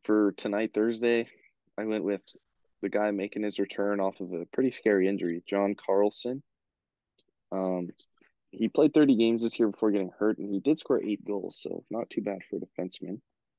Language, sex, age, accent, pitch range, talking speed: English, male, 20-39, American, 100-115 Hz, 185 wpm